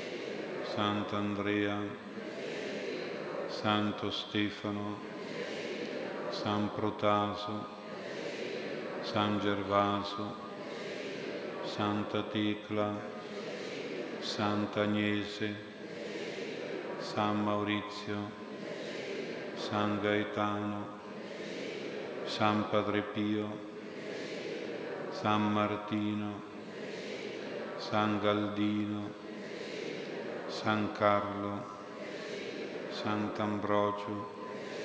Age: 50-69